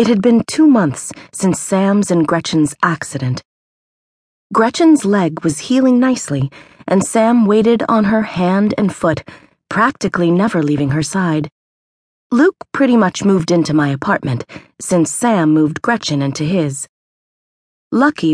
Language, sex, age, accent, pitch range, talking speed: English, female, 30-49, American, 145-210 Hz, 135 wpm